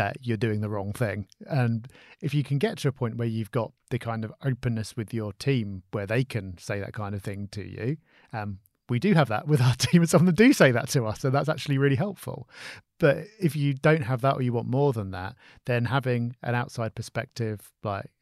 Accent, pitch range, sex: British, 110-140 Hz, male